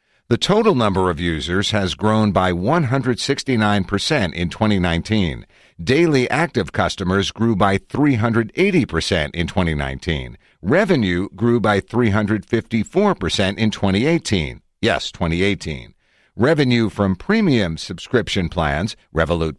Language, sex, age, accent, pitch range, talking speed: English, male, 50-69, American, 90-125 Hz, 100 wpm